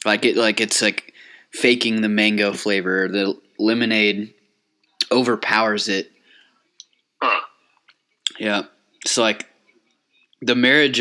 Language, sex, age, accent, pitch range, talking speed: English, male, 20-39, American, 105-125 Hz, 100 wpm